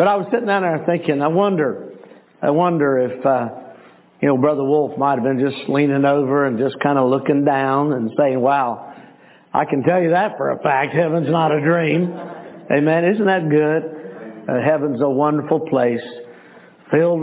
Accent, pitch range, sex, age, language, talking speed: American, 140-175 Hz, male, 60-79, English, 190 wpm